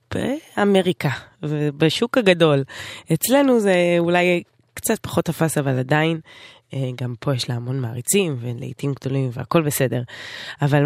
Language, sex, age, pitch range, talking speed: Hebrew, female, 20-39, 140-190 Hz, 120 wpm